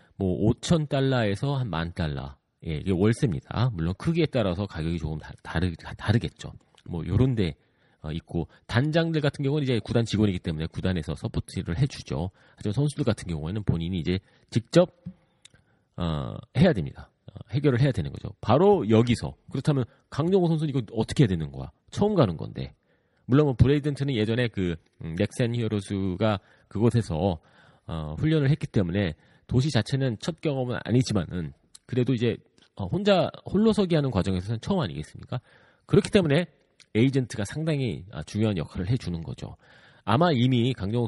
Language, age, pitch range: Korean, 40-59, 95-140 Hz